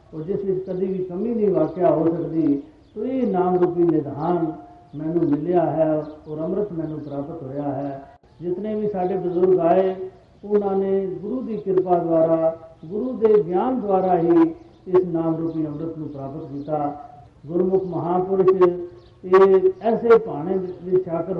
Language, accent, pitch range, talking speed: Hindi, native, 165-195 Hz, 140 wpm